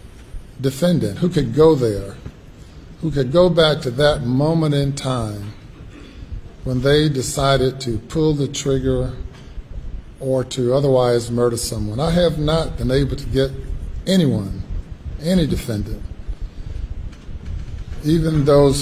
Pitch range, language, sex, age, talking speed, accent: 105-140 Hz, English, male, 50-69, 120 wpm, American